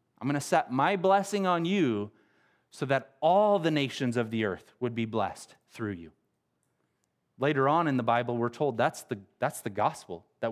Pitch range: 120-150 Hz